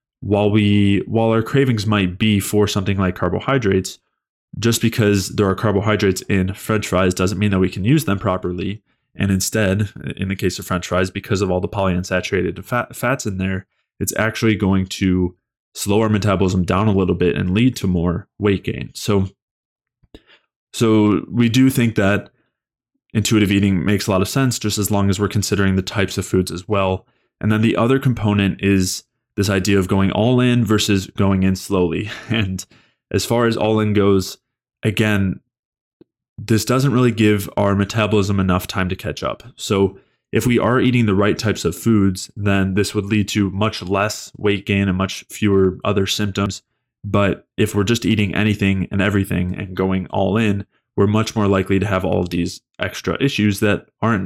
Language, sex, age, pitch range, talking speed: English, male, 20-39, 95-110 Hz, 190 wpm